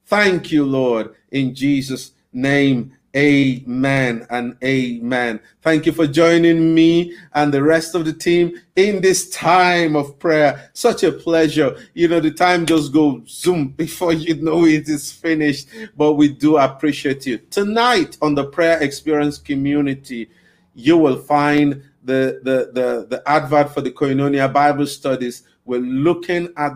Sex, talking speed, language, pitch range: male, 150 wpm, English, 130-160 Hz